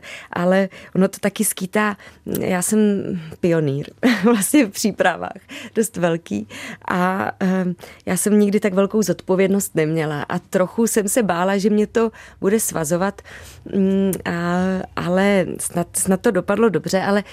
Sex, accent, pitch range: female, native, 175-200 Hz